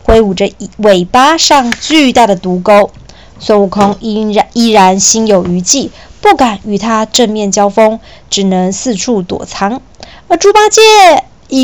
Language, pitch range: Chinese, 200-250 Hz